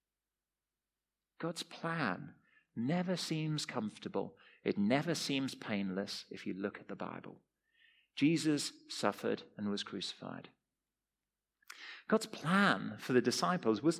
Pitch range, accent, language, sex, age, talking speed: 120-200 Hz, British, English, male, 40-59, 110 wpm